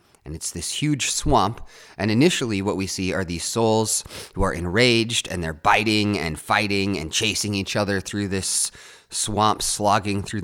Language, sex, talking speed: English, male, 170 wpm